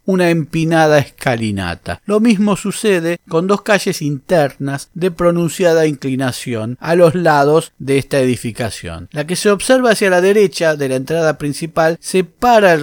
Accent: Argentinian